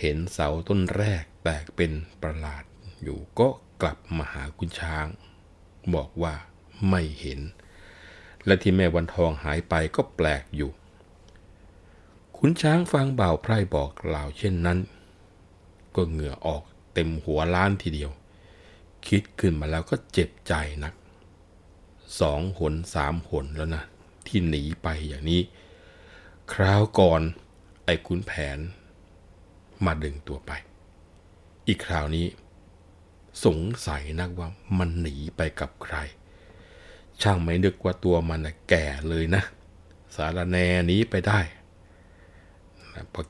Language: Thai